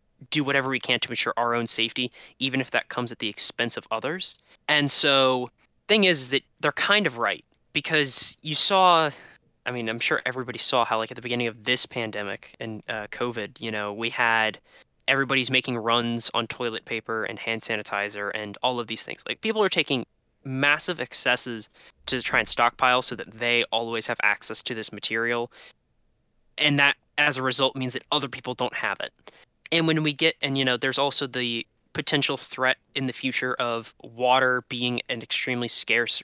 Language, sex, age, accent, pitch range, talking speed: English, male, 20-39, American, 115-135 Hz, 195 wpm